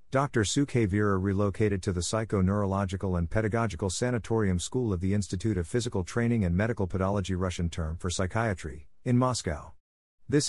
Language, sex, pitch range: English, male, 90-115 Hz